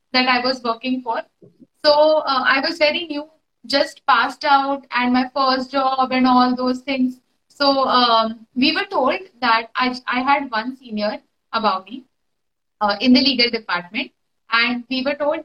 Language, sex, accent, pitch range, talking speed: English, female, Indian, 245-290 Hz, 170 wpm